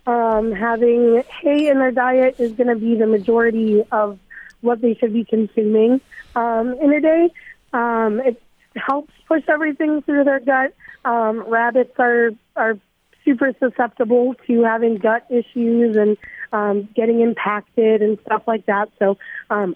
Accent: American